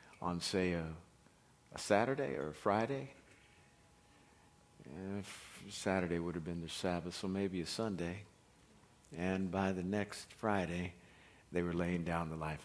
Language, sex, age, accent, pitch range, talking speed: English, male, 50-69, American, 85-110 Hz, 145 wpm